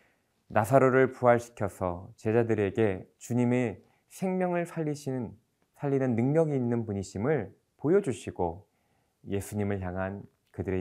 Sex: male